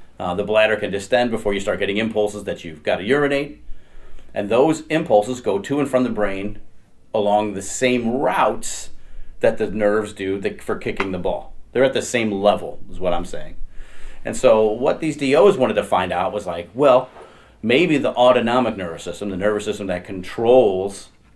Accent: American